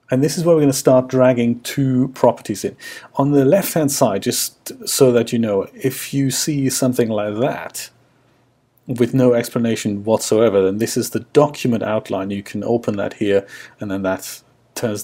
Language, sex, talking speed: English, male, 185 wpm